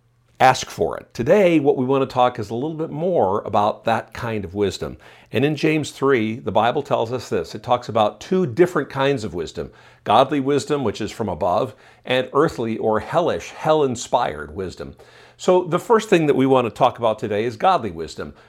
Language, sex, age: English, male, 50-69